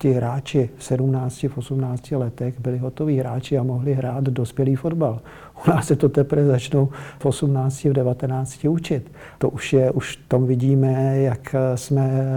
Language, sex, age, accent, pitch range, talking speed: Czech, male, 50-69, native, 125-140 Hz, 140 wpm